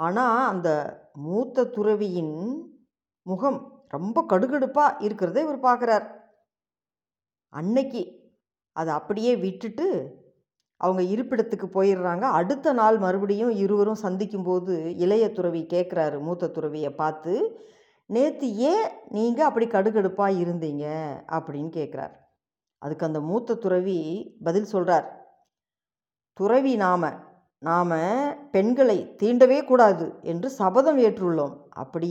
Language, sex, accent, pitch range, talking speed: Tamil, female, native, 180-250 Hz, 95 wpm